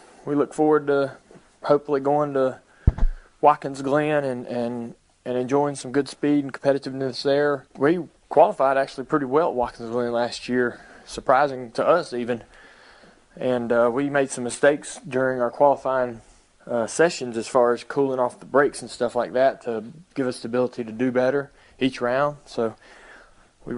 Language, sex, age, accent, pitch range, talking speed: English, male, 20-39, American, 115-140 Hz, 165 wpm